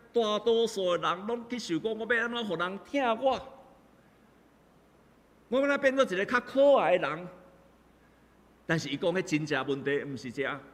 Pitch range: 175-235 Hz